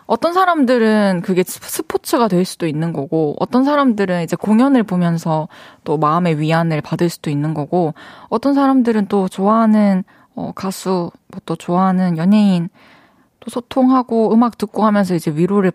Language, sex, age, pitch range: Korean, female, 20-39, 175-245 Hz